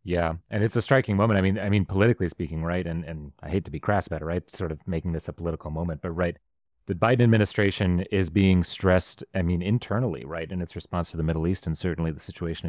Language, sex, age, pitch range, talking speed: English, male, 30-49, 80-105 Hz, 250 wpm